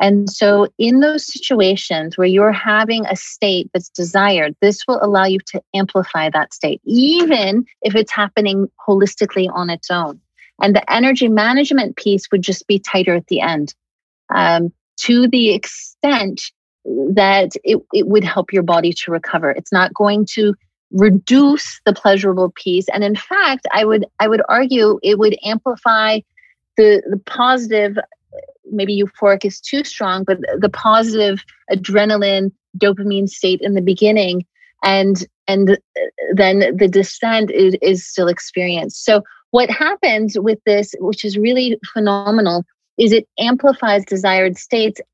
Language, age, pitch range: English, 30-49, 195-240 Hz